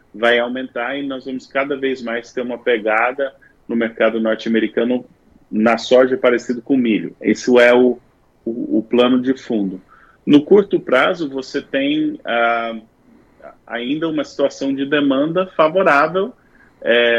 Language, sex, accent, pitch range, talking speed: Portuguese, male, Brazilian, 120-150 Hz, 140 wpm